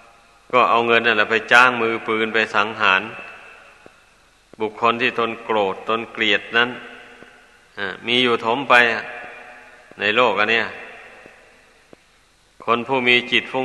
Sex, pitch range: male, 110-125 Hz